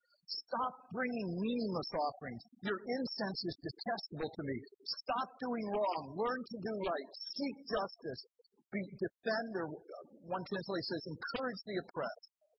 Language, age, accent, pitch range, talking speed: English, 50-69, American, 140-205 Hz, 130 wpm